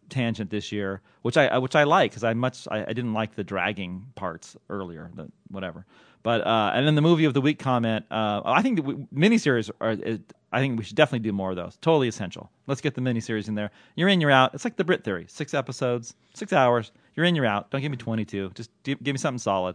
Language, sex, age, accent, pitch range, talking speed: English, male, 30-49, American, 105-130 Hz, 250 wpm